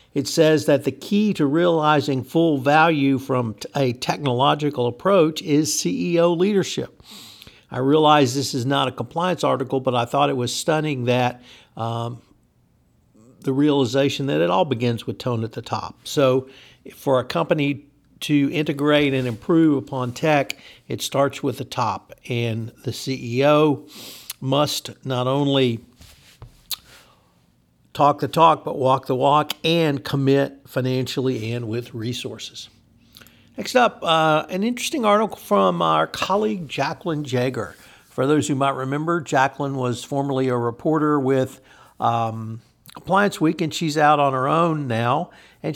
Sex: male